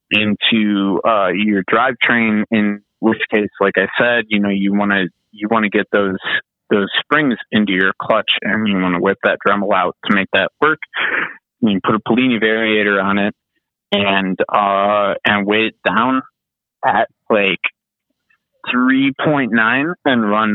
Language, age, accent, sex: English, 30-49, American, male